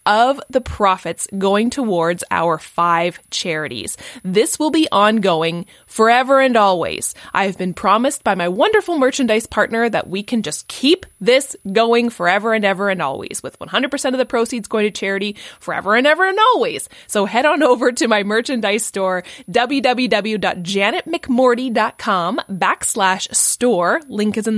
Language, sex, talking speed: English, female, 150 wpm